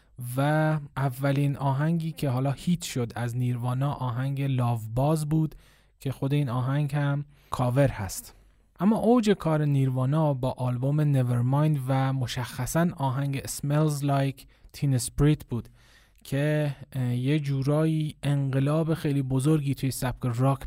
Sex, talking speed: male, 130 wpm